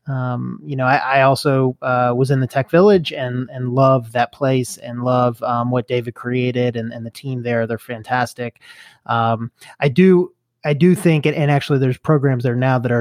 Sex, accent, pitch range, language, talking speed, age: male, American, 120-145 Hz, English, 205 wpm, 30-49